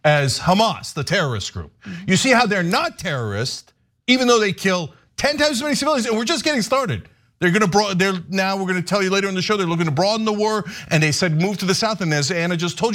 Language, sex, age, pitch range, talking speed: English, male, 40-59, 150-215 Hz, 270 wpm